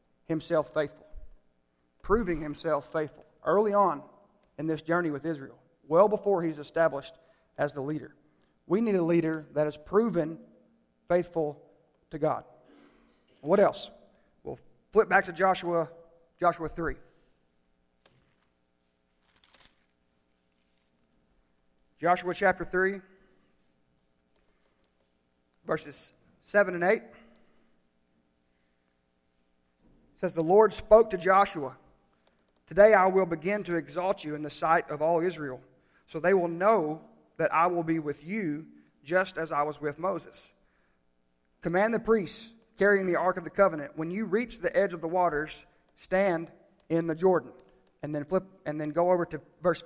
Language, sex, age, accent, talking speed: English, male, 40-59, American, 130 wpm